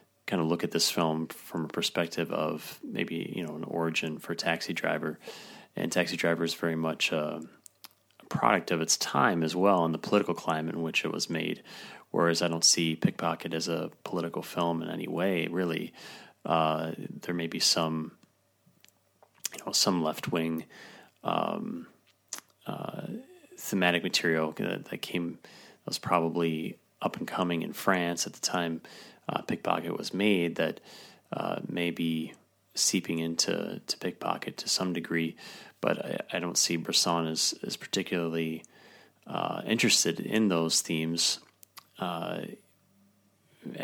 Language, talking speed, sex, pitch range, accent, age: English, 150 wpm, male, 80-95 Hz, American, 30-49